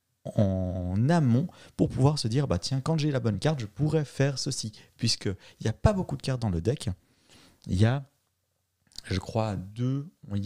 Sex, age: male, 40-59